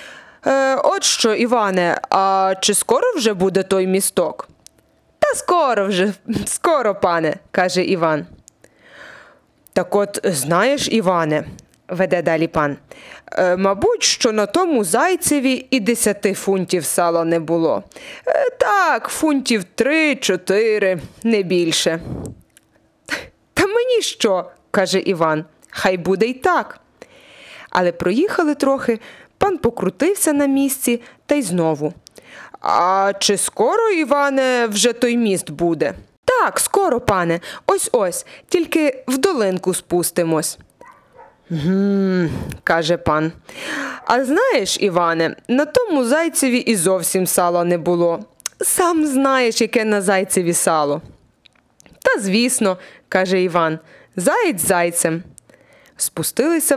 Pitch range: 175-270 Hz